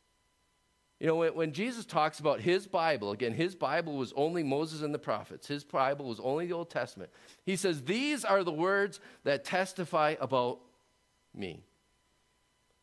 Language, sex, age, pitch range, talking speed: English, male, 50-69, 115-155 Hz, 160 wpm